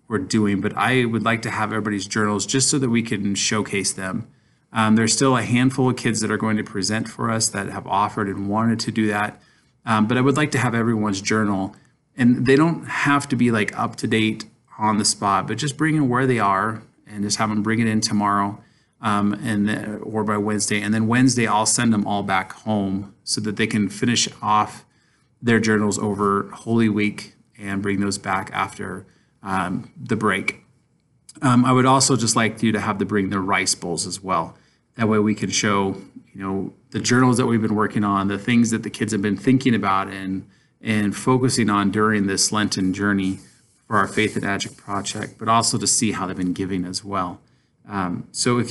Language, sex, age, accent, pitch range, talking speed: English, male, 30-49, American, 100-115 Hz, 215 wpm